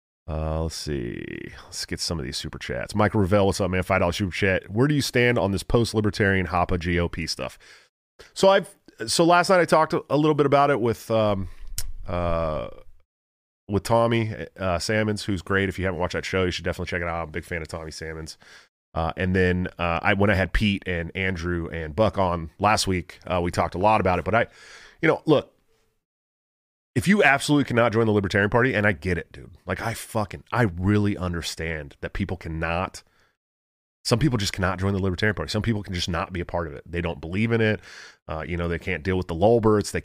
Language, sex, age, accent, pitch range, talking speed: English, male, 30-49, American, 85-105 Hz, 230 wpm